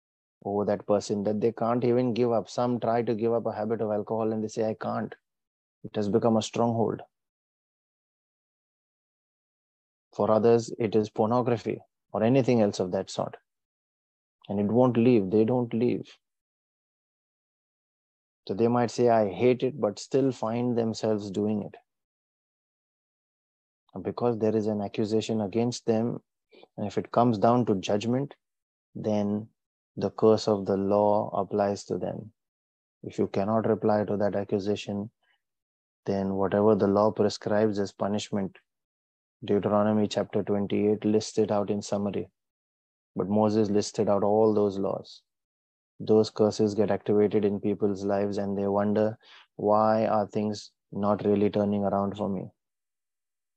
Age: 30-49